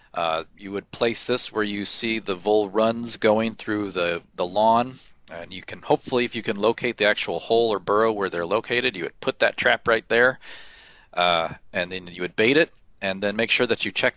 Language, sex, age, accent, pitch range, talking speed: English, male, 40-59, American, 95-115 Hz, 225 wpm